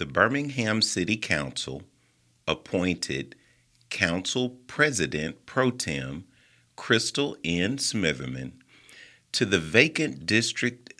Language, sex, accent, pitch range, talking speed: English, male, American, 80-120 Hz, 85 wpm